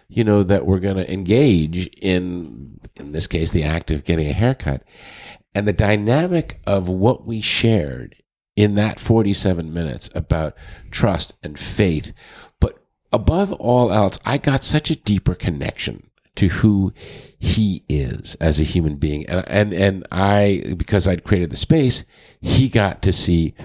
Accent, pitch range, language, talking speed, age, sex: American, 80-110 Hz, English, 160 wpm, 50-69, male